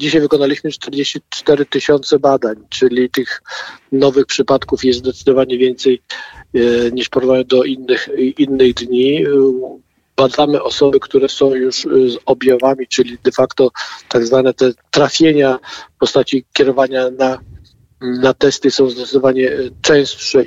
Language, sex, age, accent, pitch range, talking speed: Polish, male, 50-69, native, 125-135 Hz, 115 wpm